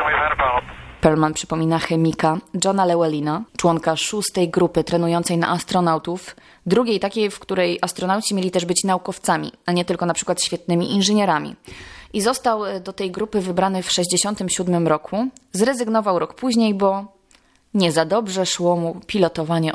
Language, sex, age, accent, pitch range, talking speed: Polish, female, 20-39, native, 165-195 Hz, 140 wpm